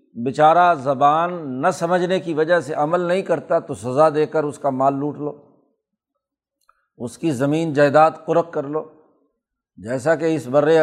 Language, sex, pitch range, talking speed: Urdu, male, 150-180 Hz, 165 wpm